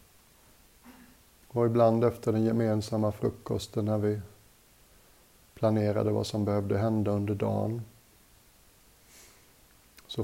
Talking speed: 95 wpm